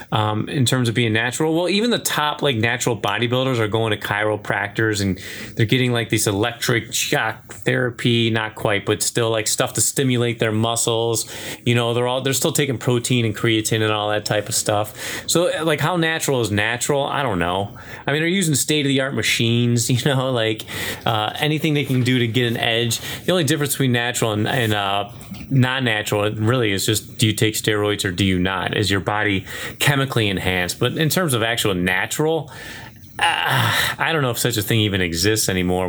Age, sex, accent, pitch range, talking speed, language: 30-49, male, American, 105-130 Hz, 205 wpm, English